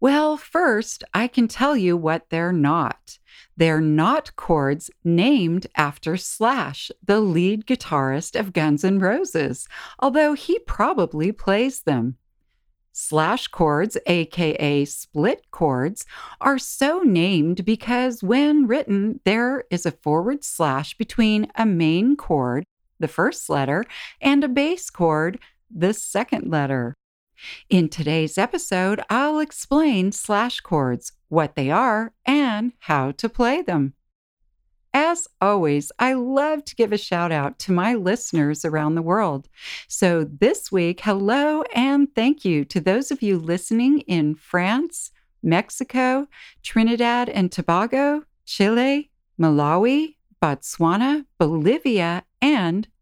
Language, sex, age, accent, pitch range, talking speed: English, female, 40-59, American, 165-260 Hz, 125 wpm